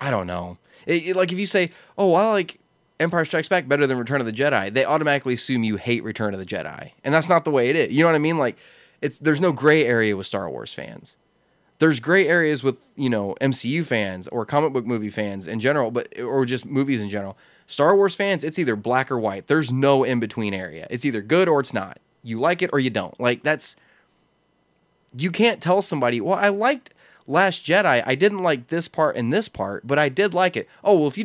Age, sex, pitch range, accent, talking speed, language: 20-39, male, 120-175 Hz, American, 240 wpm, English